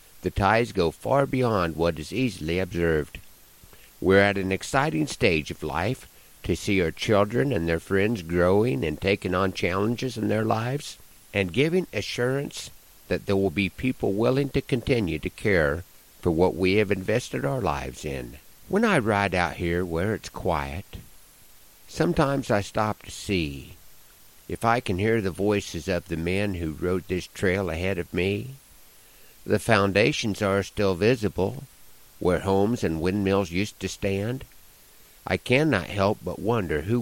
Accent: American